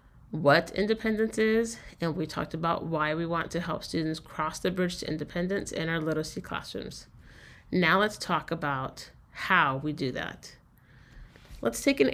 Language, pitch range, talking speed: English, 160-195 Hz, 165 wpm